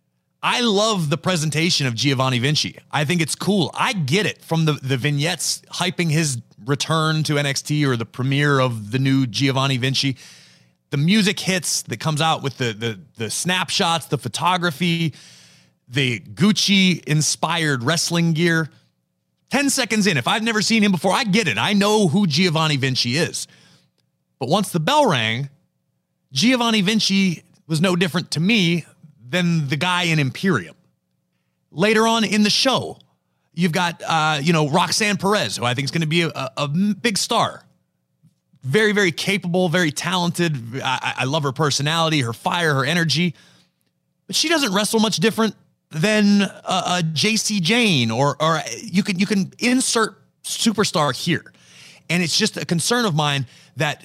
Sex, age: male, 30-49